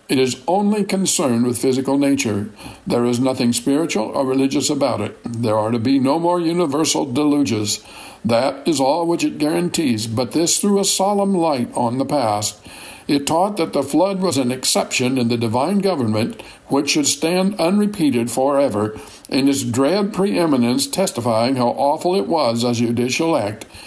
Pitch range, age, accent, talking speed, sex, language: 120-165 Hz, 60-79, American, 170 wpm, male, English